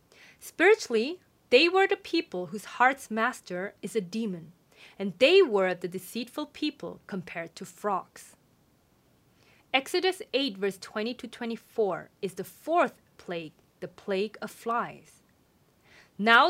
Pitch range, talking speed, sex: 195-275 Hz, 125 wpm, female